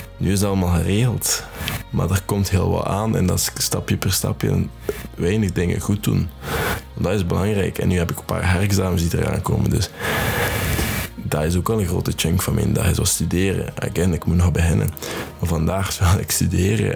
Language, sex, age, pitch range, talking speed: Dutch, male, 20-39, 85-100 Hz, 200 wpm